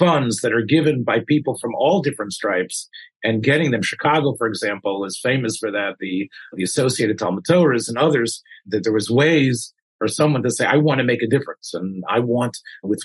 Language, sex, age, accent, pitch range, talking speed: English, male, 40-59, American, 115-155 Hz, 205 wpm